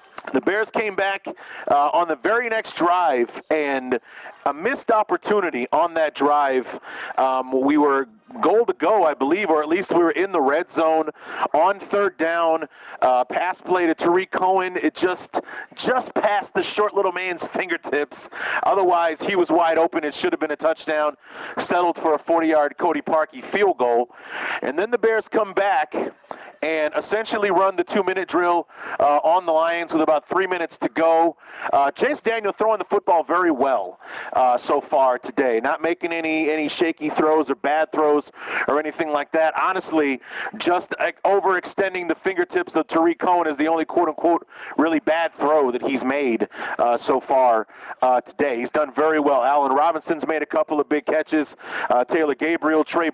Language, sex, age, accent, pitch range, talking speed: English, male, 40-59, American, 150-180 Hz, 180 wpm